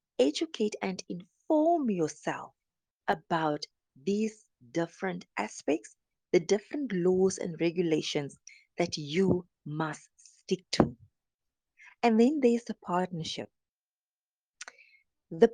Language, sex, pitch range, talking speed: English, female, 160-225 Hz, 95 wpm